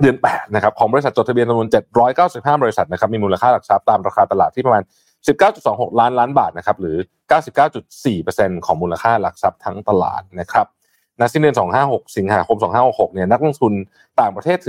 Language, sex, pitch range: Thai, male, 100-155 Hz